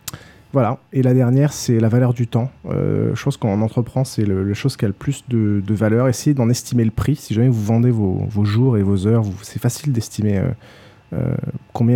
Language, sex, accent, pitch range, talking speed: French, male, French, 105-125 Hz, 225 wpm